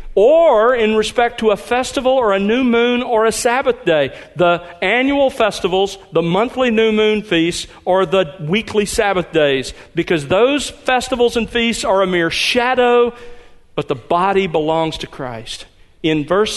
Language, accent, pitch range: English, American, 155-210 Hz